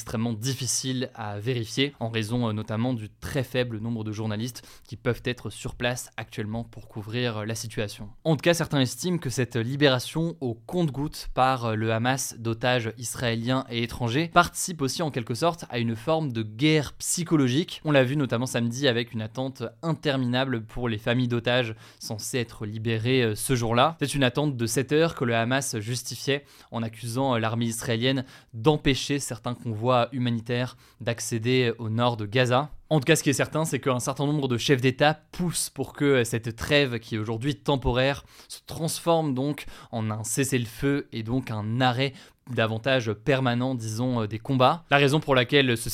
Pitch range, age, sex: 115-140 Hz, 20-39, male